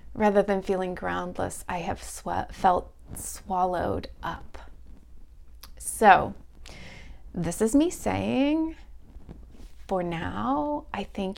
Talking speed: 95 wpm